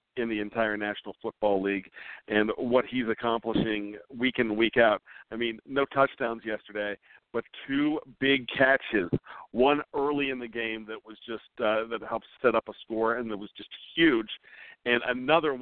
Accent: American